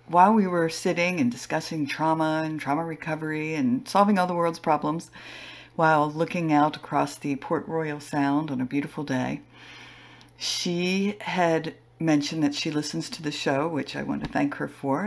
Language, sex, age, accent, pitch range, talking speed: English, female, 50-69, American, 150-195 Hz, 175 wpm